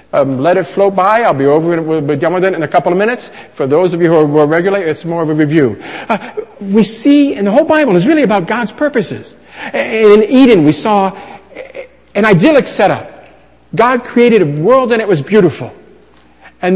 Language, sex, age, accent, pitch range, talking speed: English, male, 50-69, American, 165-230 Hz, 195 wpm